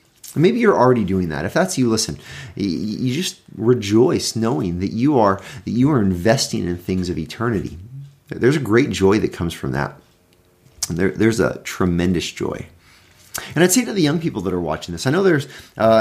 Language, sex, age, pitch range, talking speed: English, male, 30-49, 95-130 Hz, 200 wpm